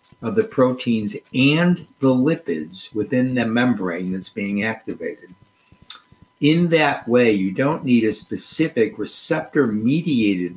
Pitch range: 105-140 Hz